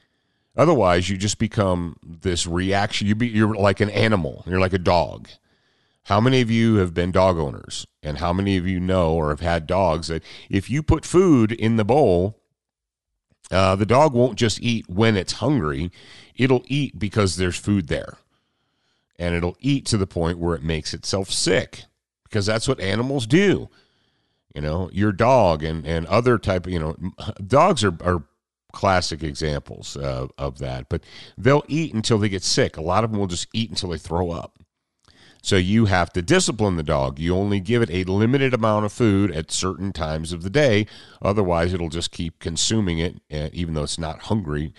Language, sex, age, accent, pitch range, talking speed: English, male, 40-59, American, 85-110 Hz, 190 wpm